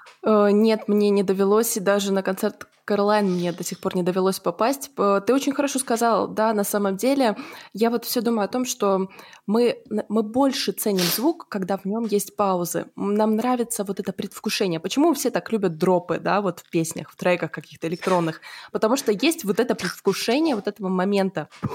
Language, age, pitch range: Russian, 20-39, 185-225 Hz